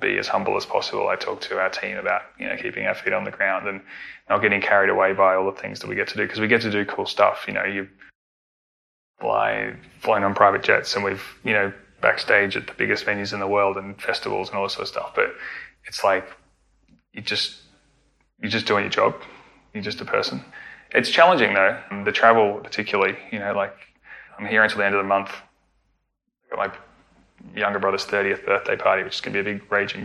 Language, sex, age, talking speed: English, male, 20-39, 220 wpm